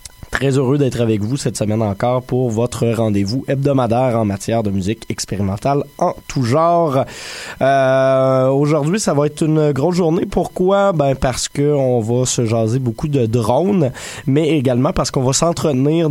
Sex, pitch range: male, 110-140 Hz